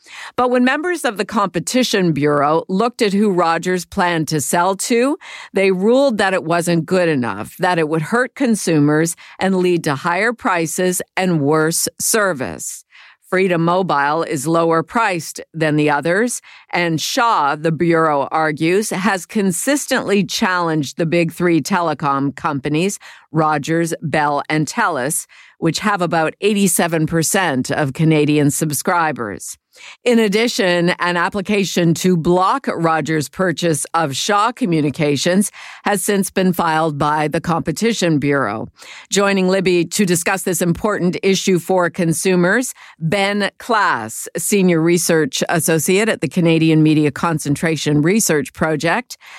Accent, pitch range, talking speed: American, 160-200 Hz, 130 wpm